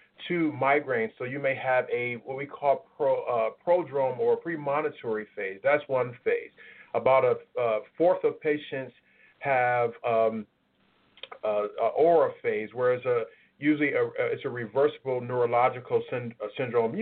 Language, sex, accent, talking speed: English, male, American, 150 wpm